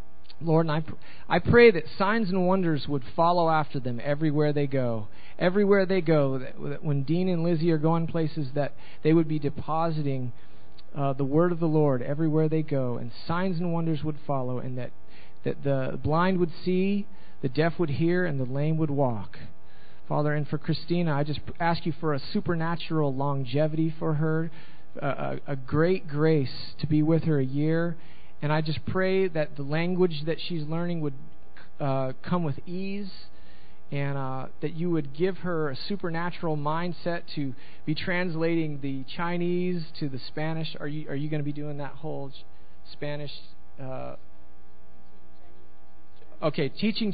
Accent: American